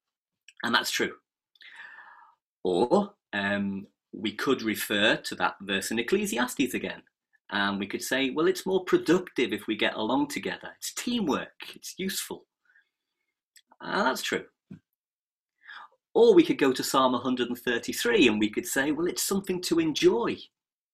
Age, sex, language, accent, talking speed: 40-59, male, English, British, 145 wpm